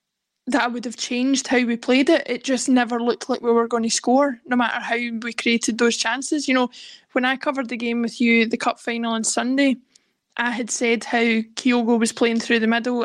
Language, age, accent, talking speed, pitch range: English, 20-39, British, 225 wpm, 230-255 Hz